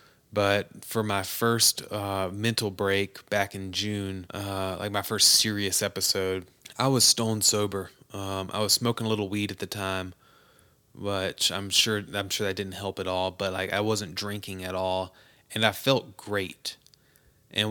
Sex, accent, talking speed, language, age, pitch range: male, American, 175 wpm, English, 20-39, 95-110 Hz